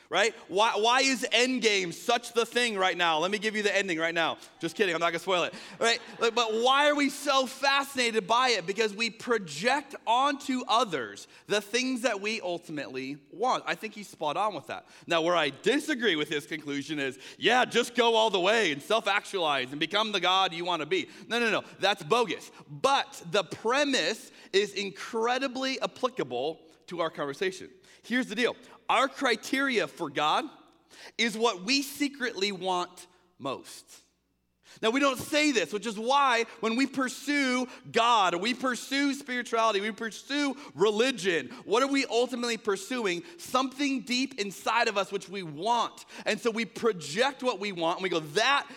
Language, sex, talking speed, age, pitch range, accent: English, male, 175 wpm, 30-49, 195-260 Hz, American